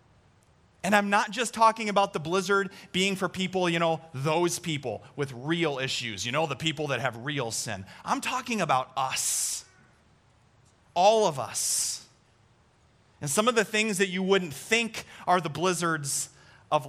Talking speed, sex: 165 wpm, male